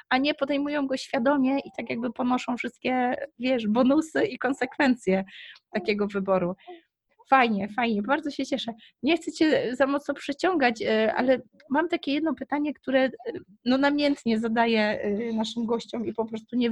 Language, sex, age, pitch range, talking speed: Polish, female, 20-39, 230-275 Hz, 150 wpm